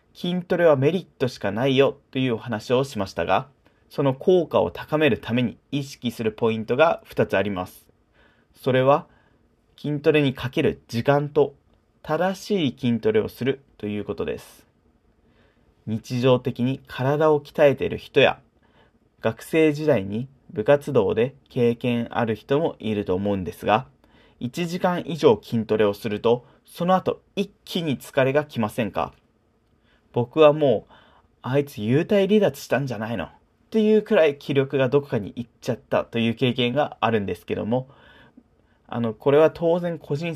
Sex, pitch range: male, 115-155 Hz